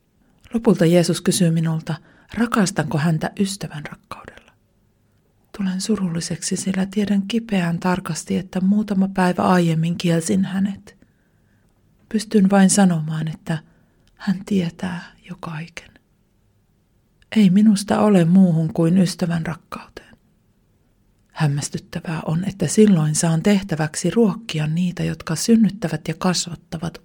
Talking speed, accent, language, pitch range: 105 wpm, native, Finnish, 165-195 Hz